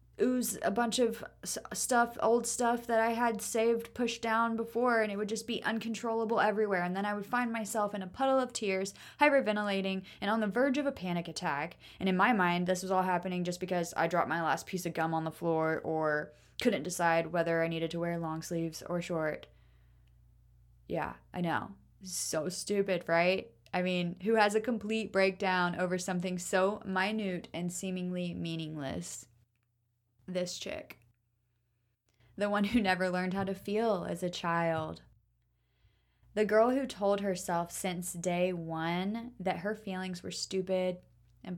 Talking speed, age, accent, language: 175 wpm, 20-39, American, English